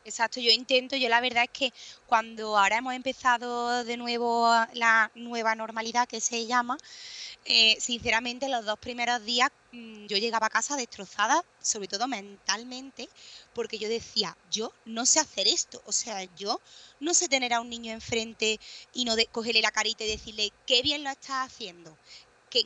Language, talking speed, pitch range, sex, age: Spanish, 170 wpm, 215-260 Hz, female, 20-39